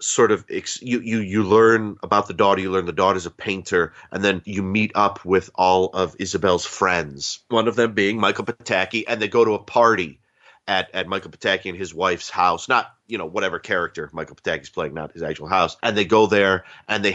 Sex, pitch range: male, 95-110 Hz